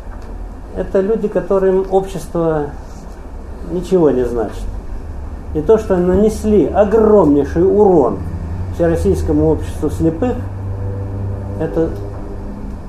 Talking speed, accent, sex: 80 wpm, native, male